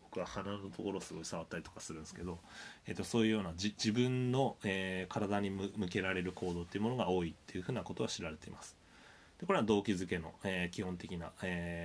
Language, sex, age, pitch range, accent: Japanese, male, 20-39, 85-110 Hz, native